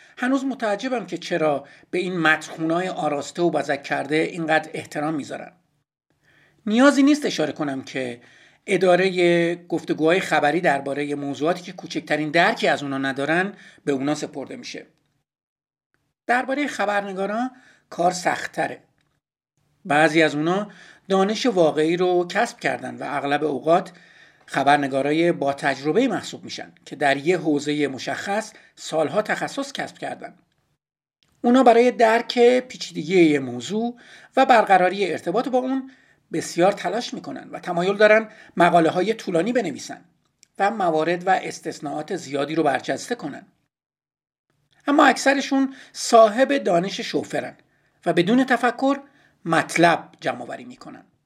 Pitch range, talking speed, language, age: 150-225 Hz, 125 wpm, Persian, 50-69